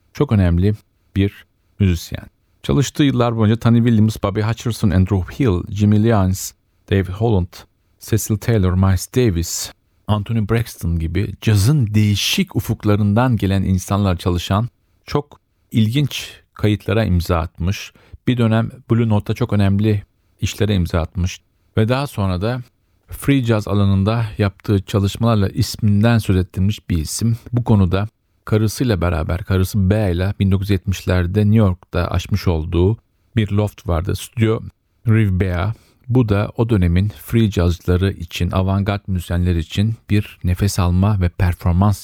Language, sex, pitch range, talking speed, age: Turkish, male, 90-110 Hz, 130 wpm, 40-59